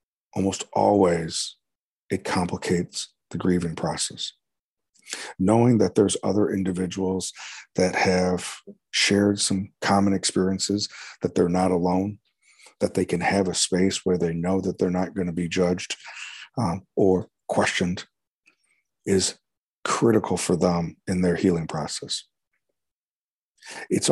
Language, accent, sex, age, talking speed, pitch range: English, American, male, 40-59, 125 wpm, 90-100 Hz